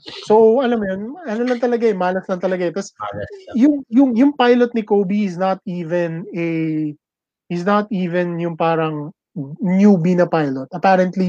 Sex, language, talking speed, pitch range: male, English, 145 wpm, 165-200 Hz